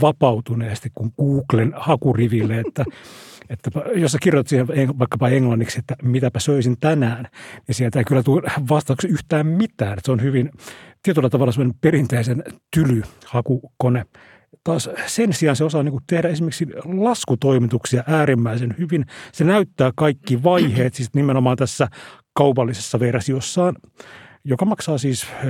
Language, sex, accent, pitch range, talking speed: Finnish, male, native, 120-150 Hz, 130 wpm